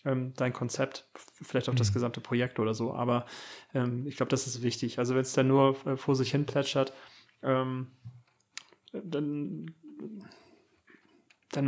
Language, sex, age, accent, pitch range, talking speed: German, male, 30-49, German, 125-135 Hz, 140 wpm